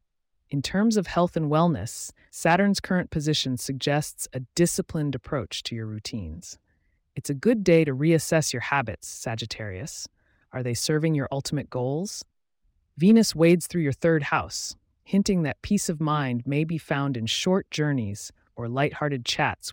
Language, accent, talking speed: English, American, 155 wpm